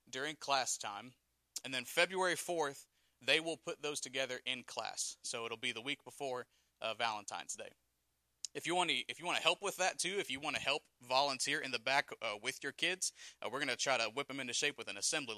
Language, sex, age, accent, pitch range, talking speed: English, male, 30-49, American, 125-160 Hz, 220 wpm